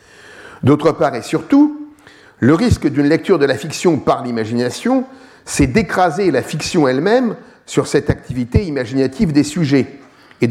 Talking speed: 145 wpm